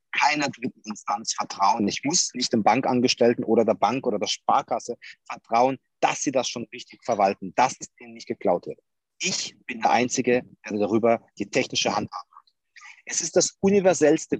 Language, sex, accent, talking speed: German, male, German, 175 wpm